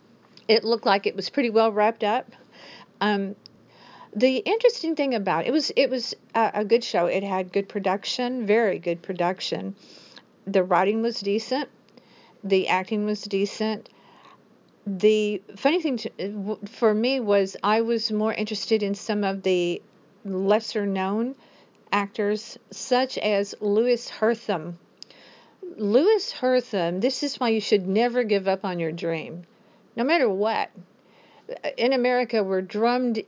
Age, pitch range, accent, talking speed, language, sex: 50-69, 200-250 Hz, American, 140 wpm, English, female